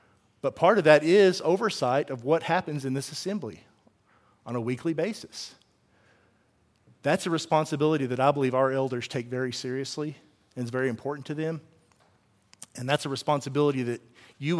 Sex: male